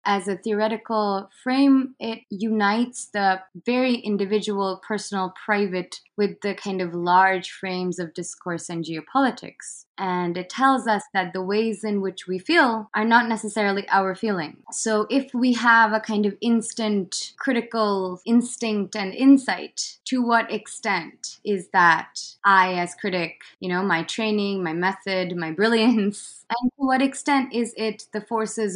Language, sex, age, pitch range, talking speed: English, female, 20-39, 185-220 Hz, 150 wpm